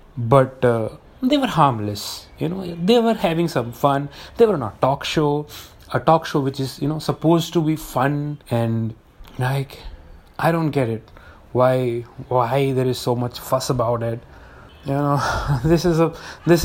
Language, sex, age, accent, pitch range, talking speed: Hindi, male, 30-49, native, 120-160 Hz, 180 wpm